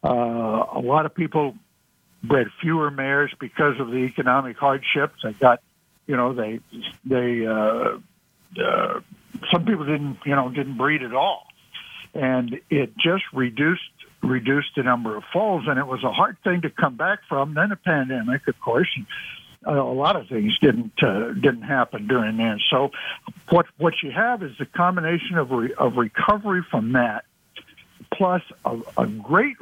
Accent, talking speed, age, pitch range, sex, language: American, 170 wpm, 60-79, 125-170 Hz, male, English